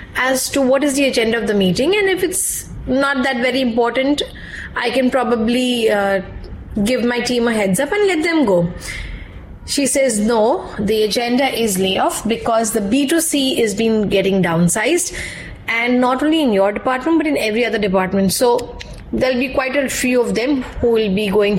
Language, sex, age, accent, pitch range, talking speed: English, female, 20-39, Indian, 215-280 Hz, 185 wpm